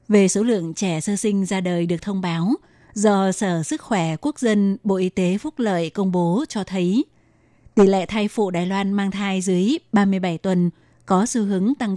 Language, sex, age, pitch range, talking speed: Vietnamese, female, 20-39, 185-205 Hz, 205 wpm